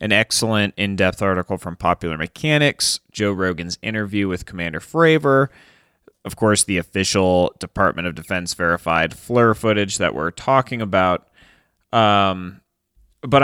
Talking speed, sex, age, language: 130 wpm, male, 30-49, English